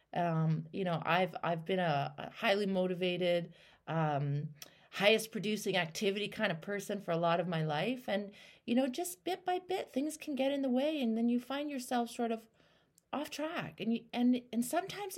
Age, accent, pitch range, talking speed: 30-49, American, 170-230 Hz, 200 wpm